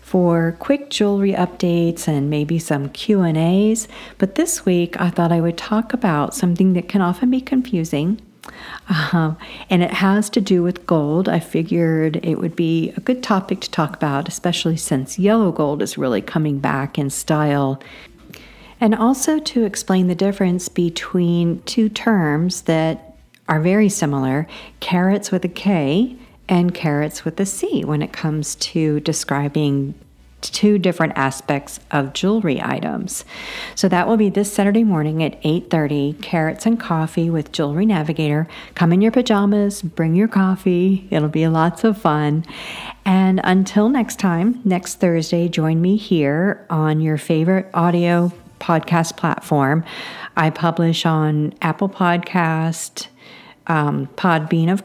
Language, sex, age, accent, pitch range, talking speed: English, female, 50-69, American, 160-200 Hz, 150 wpm